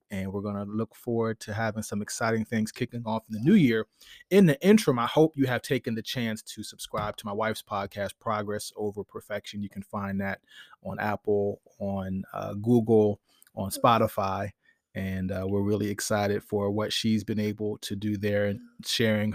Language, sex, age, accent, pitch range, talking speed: English, male, 30-49, American, 105-120 Hz, 190 wpm